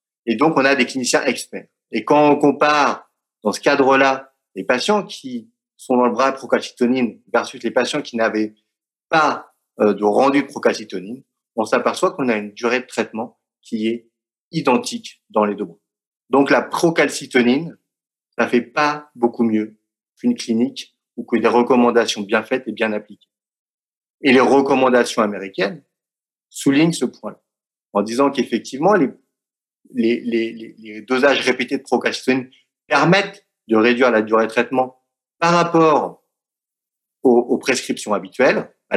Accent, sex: French, male